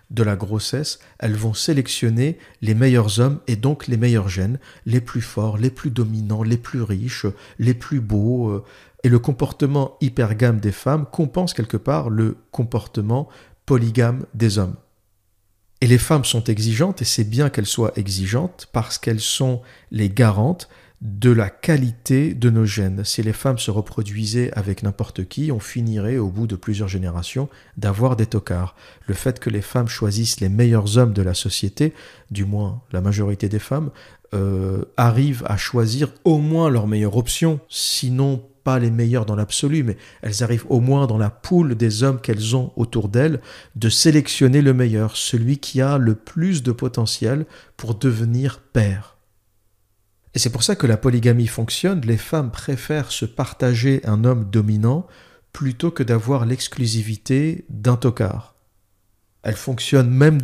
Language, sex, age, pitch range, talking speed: French, male, 50-69, 110-135 Hz, 165 wpm